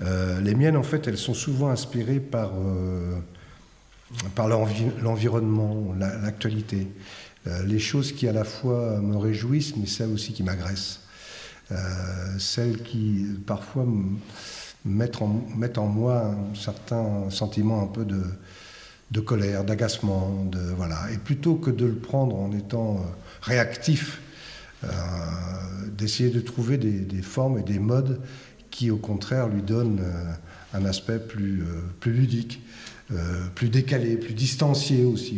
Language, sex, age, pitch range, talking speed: French, male, 50-69, 95-120 Hz, 130 wpm